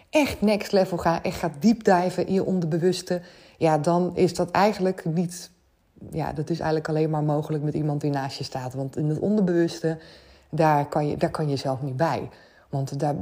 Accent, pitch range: Dutch, 150-185 Hz